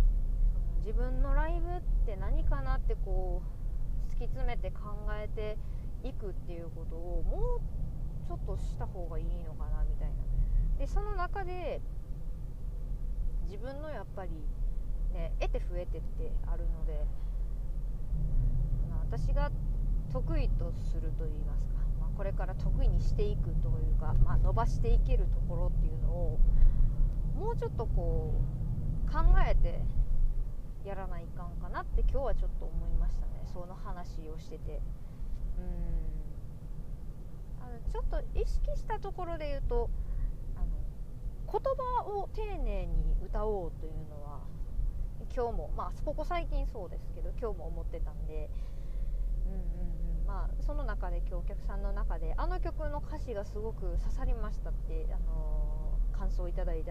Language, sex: Japanese, female